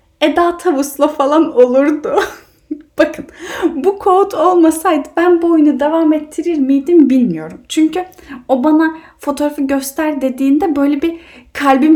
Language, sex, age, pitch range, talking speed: Turkish, female, 10-29, 240-335 Hz, 120 wpm